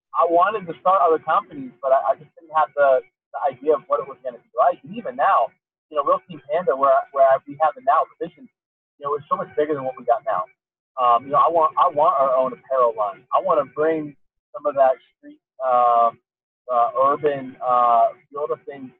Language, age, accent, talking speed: English, 30-49, American, 230 wpm